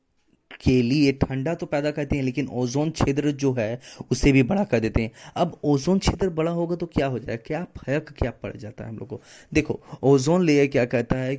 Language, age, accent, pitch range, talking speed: Hindi, 20-39, native, 120-140 Hz, 220 wpm